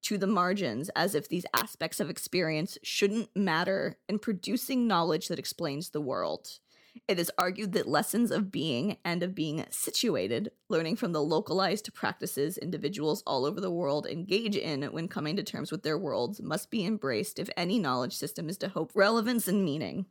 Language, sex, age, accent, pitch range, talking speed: English, female, 20-39, American, 165-215 Hz, 180 wpm